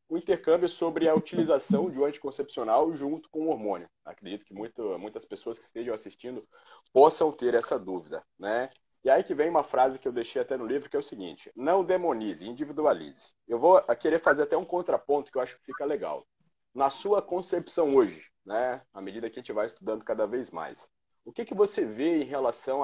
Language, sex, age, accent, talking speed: Portuguese, male, 30-49, Brazilian, 205 wpm